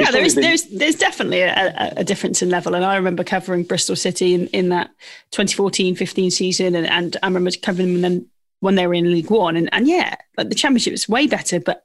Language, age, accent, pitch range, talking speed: English, 30-49, British, 185-240 Hz, 225 wpm